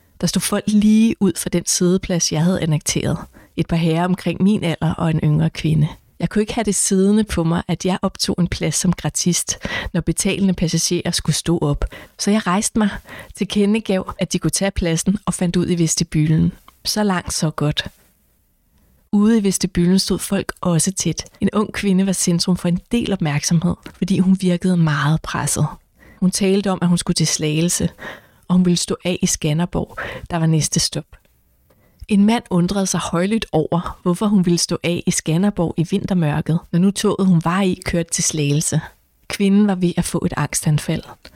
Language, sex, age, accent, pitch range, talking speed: Danish, female, 30-49, native, 165-190 Hz, 195 wpm